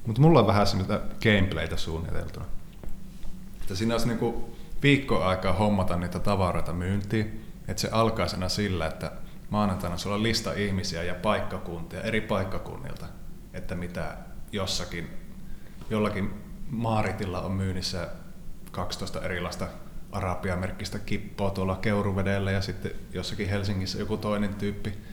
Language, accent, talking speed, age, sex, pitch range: Finnish, native, 115 wpm, 30-49, male, 90-105 Hz